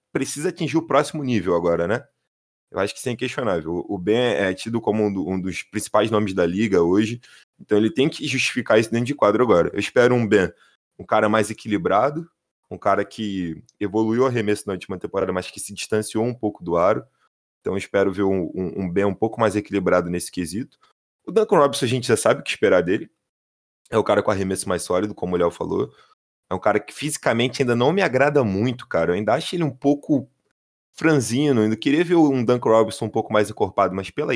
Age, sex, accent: 20-39, male, Brazilian